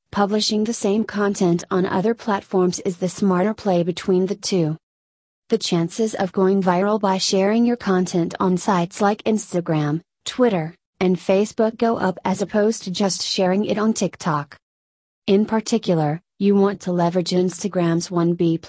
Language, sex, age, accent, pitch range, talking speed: English, female, 30-49, American, 175-205 Hz, 155 wpm